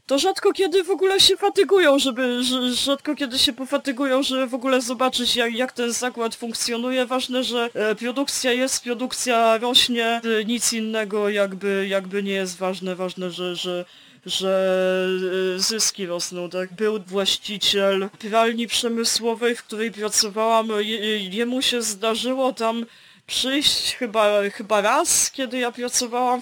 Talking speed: 140 wpm